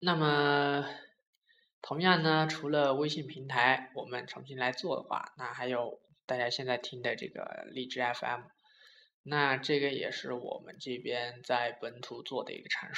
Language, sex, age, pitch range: Chinese, male, 20-39, 135-165 Hz